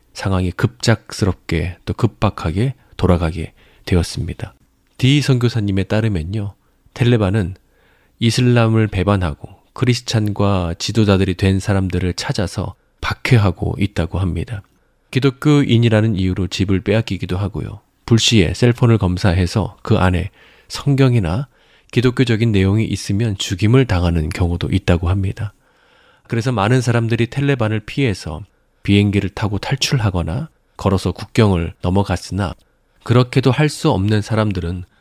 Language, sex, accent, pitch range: Korean, male, native, 95-120 Hz